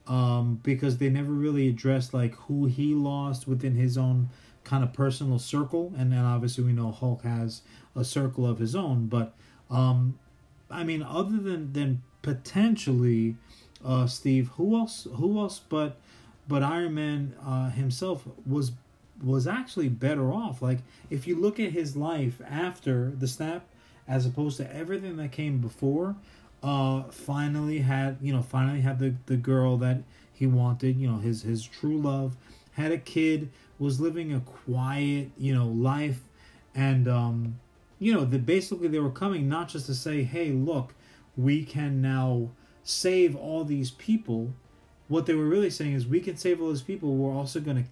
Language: English